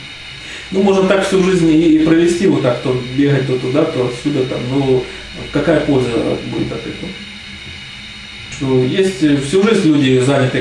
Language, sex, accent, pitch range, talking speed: Russian, male, native, 125-155 Hz, 160 wpm